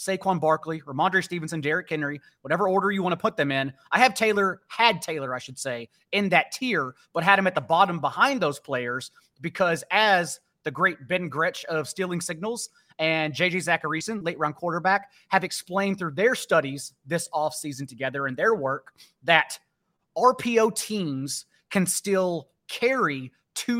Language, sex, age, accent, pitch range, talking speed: English, male, 30-49, American, 155-195 Hz, 165 wpm